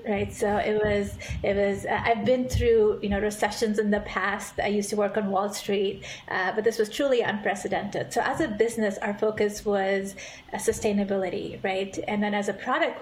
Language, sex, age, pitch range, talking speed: English, female, 30-49, 200-230 Hz, 205 wpm